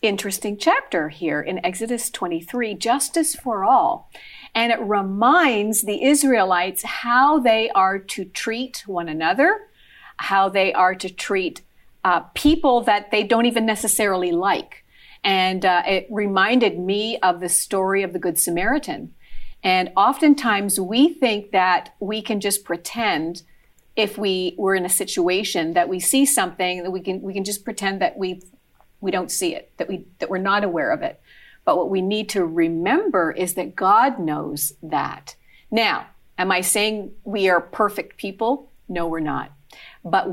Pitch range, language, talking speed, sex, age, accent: 185-265 Hz, English, 160 wpm, female, 50-69, American